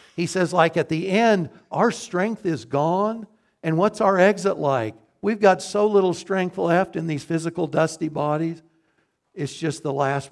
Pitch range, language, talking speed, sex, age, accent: 140-185 Hz, English, 175 wpm, male, 60-79, American